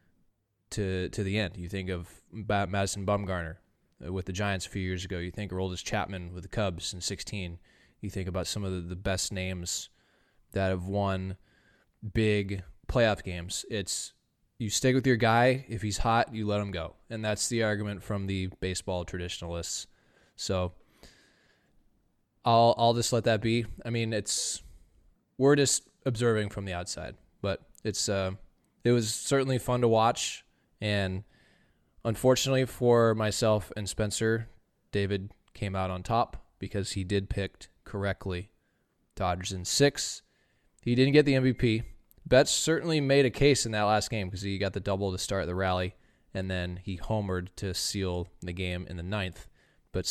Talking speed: 170 wpm